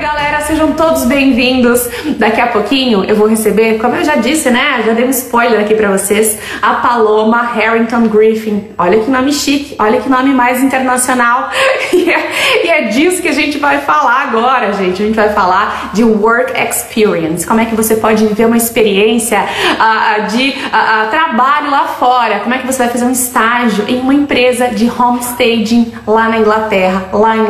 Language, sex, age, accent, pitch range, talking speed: Portuguese, female, 20-39, Brazilian, 220-295 Hz, 190 wpm